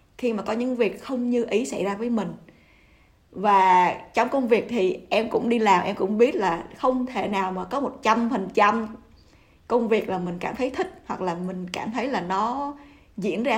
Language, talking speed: Vietnamese, 215 wpm